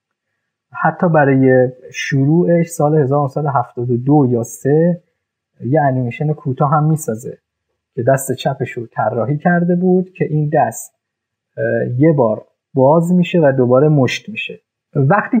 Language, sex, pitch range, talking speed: Persian, male, 120-160 Hz, 120 wpm